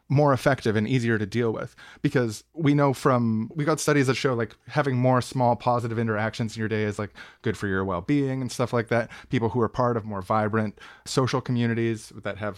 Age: 20-39